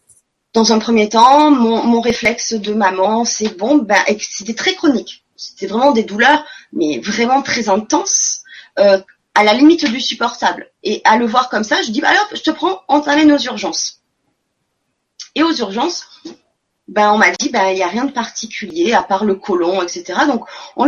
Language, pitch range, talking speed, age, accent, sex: French, 220-300 Hz, 195 wpm, 20-39, French, female